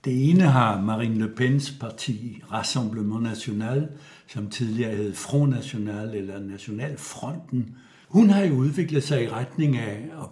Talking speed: 145 wpm